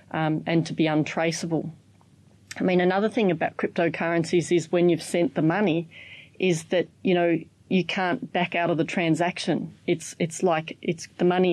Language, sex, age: English, female, 30-49